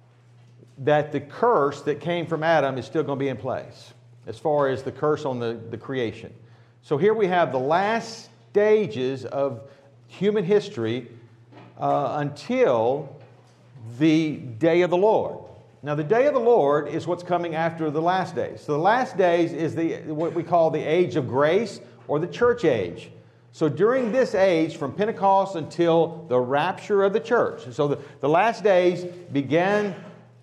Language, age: English, 50-69